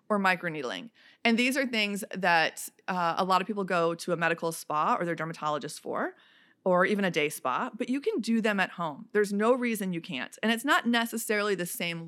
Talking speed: 220 wpm